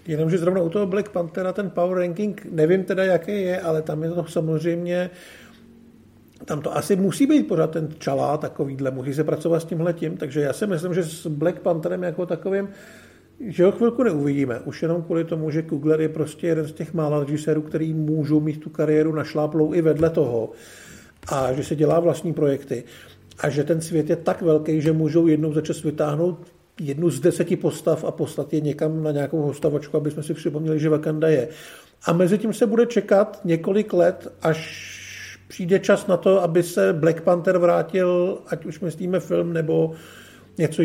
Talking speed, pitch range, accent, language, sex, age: 190 wpm, 155-180 Hz, native, Czech, male, 50-69